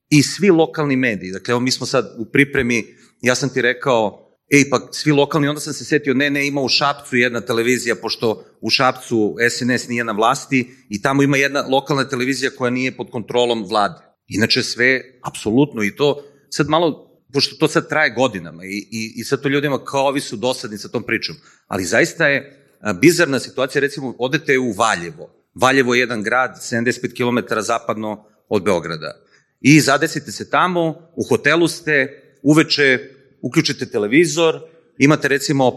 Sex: male